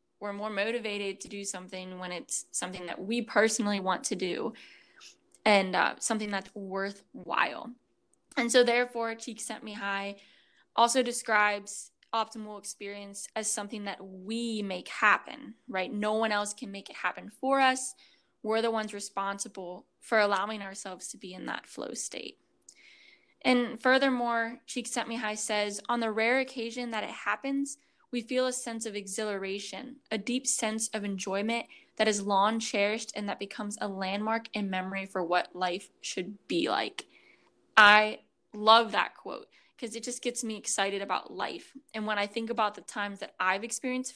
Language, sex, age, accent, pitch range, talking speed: English, female, 10-29, American, 200-240 Hz, 165 wpm